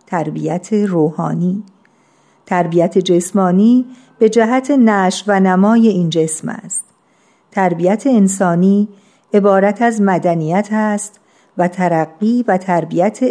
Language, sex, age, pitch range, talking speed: Persian, female, 50-69, 175-220 Hz, 100 wpm